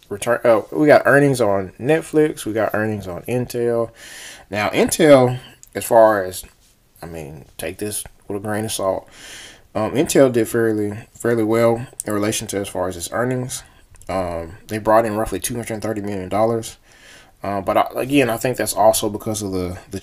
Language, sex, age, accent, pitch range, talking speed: English, male, 20-39, American, 95-120 Hz, 185 wpm